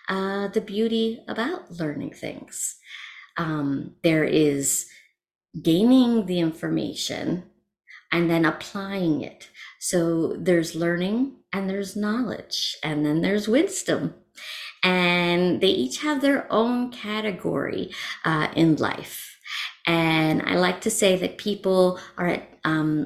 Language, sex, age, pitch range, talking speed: English, female, 30-49, 170-215 Hz, 120 wpm